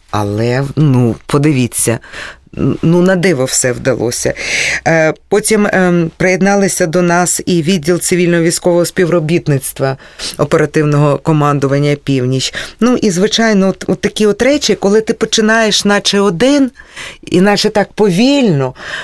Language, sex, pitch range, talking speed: Russian, female, 145-205 Hz, 115 wpm